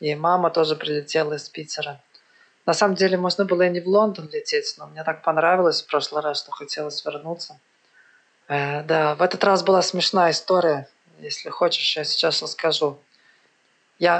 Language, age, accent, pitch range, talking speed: Russian, 20-39, native, 155-180 Hz, 170 wpm